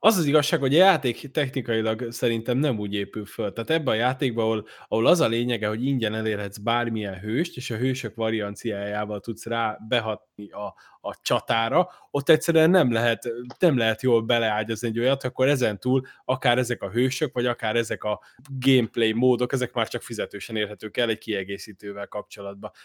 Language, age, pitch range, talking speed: Hungarian, 20-39, 110-135 Hz, 180 wpm